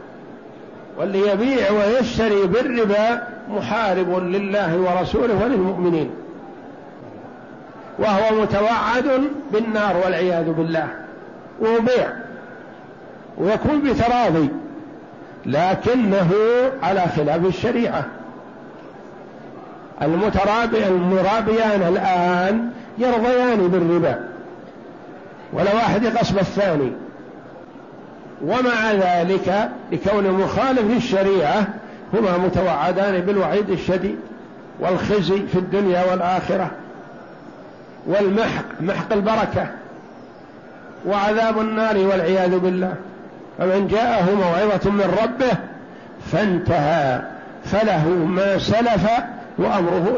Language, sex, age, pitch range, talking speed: Arabic, male, 50-69, 180-225 Hz, 70 wpm